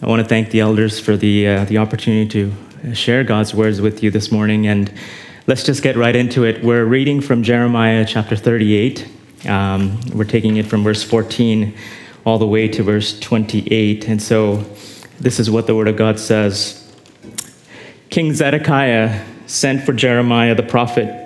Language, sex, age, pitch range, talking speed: English, male, 30-49, 110-140 Hz, 175 wpm